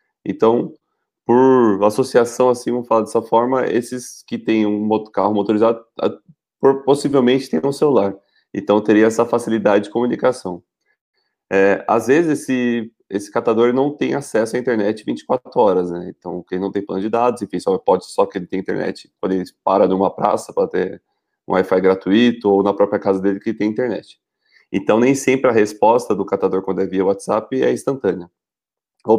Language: Portuguese